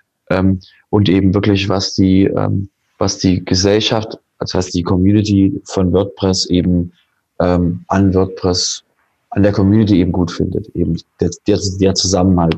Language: German